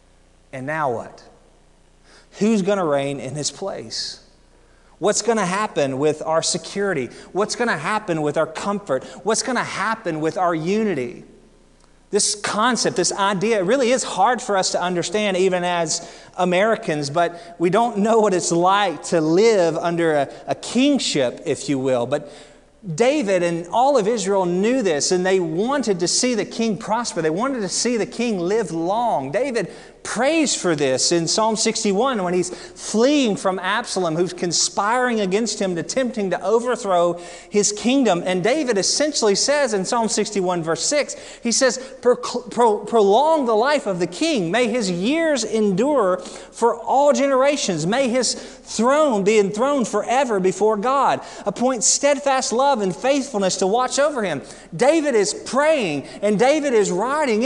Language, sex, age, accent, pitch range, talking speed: English, male, 30-49, American, 175-250 Hz, 160 wpm